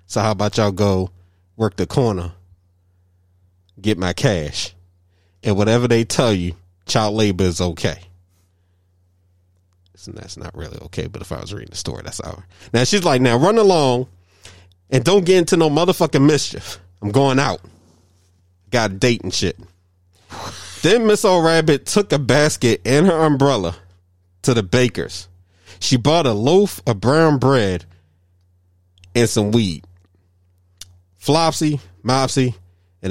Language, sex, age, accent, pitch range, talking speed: English, male, 30-49, American, 90-125 Hz, 145 wpm